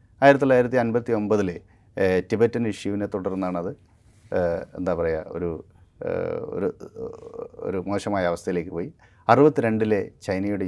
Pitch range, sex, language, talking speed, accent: 100-150 Hz, male, Malayalam, 90 wpm, native